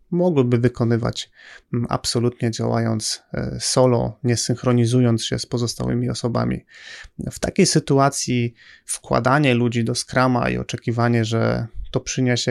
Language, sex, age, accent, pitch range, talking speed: Polish, male, 30-49, native, 120-135 Hz, 110 wpm